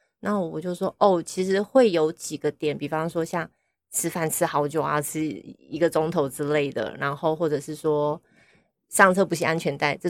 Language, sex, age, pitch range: Chinese, female, 20-39, 155-195 Hz